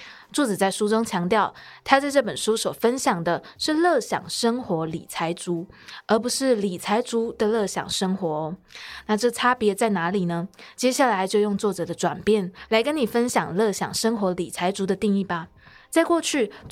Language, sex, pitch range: Chinese, female, 185-235 Hz